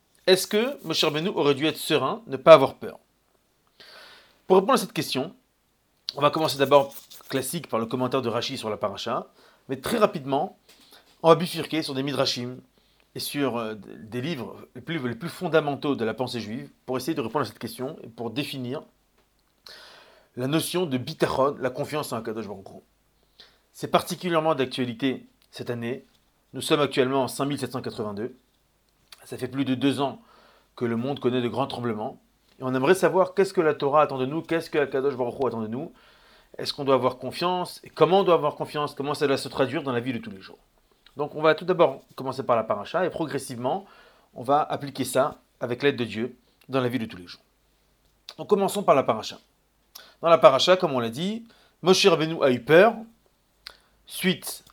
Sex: male